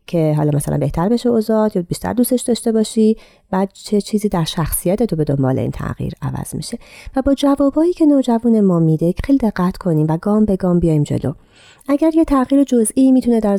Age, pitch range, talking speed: 30-49, 155-215 Hz, 200 wpm